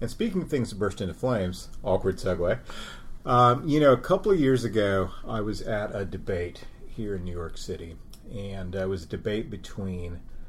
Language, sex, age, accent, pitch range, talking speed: English, male, 40-59, American, 90-115 Hz, 200 wpm